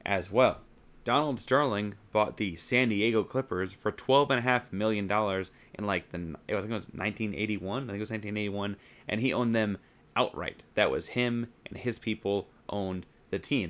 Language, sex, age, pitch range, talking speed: English, male, 30-49, 100-115 Hz, 175 wpm